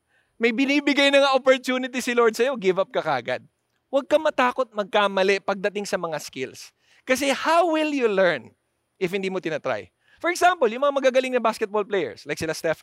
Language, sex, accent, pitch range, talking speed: English, male, Filipino, 200-270 Hz, 185 wpm